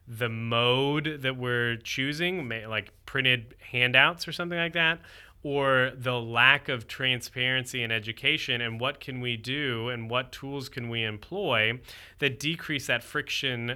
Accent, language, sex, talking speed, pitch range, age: American, English, male, 150 wpm, 115-140 Hz, 30-49